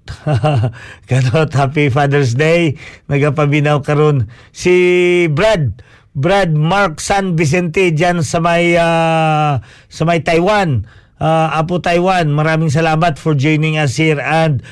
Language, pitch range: Filipino, 130-160 Hz